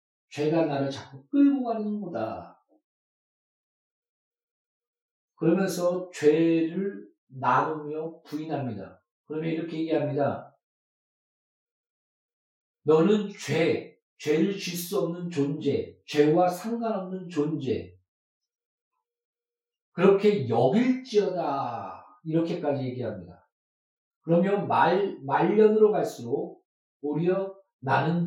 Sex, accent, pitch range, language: male, native, 155-235 Hz, Korean